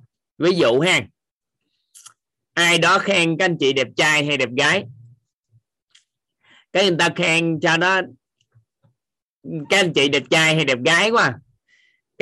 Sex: male